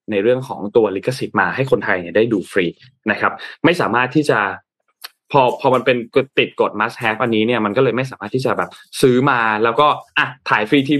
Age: 20-39